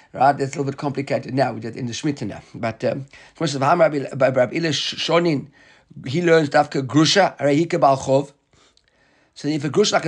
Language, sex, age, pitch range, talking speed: English, male, 50-69, 140-180 Hz, 165 wpm